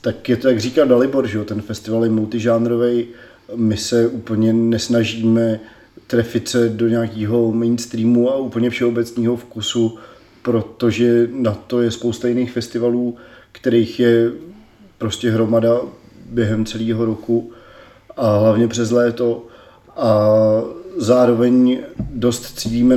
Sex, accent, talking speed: male, native, 120 wpm